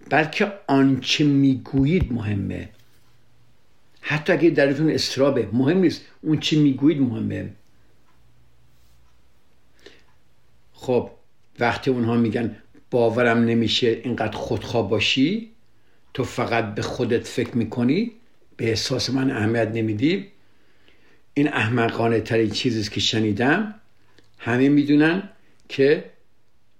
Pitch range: 110-135 Hz